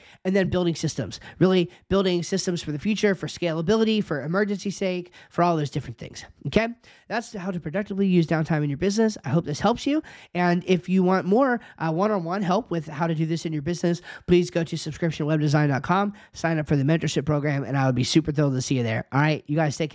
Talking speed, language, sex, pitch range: 230 wpm, English, male, 145-190 Hz